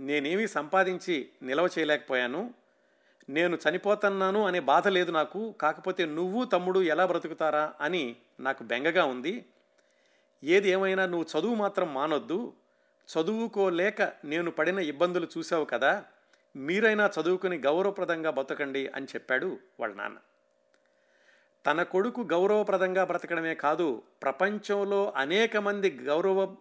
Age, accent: 50-69, native